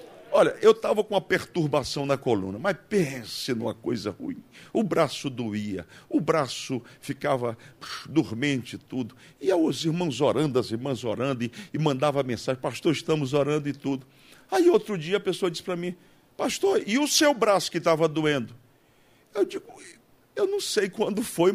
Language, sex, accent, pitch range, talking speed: Portuguese, male, Brazilian, 135-190 Hz, 170 wpm